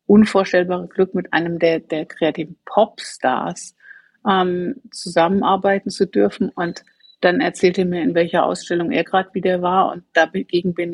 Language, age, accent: German, 50-69, German